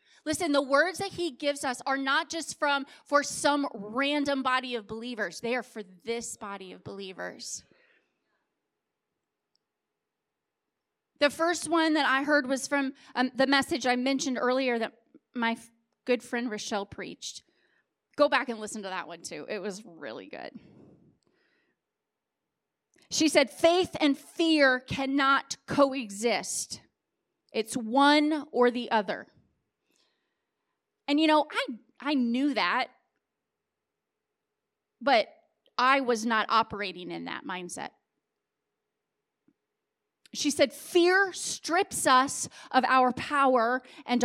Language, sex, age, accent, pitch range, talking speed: English, female, 30-49, American, 240-310 Hz, 125 wpm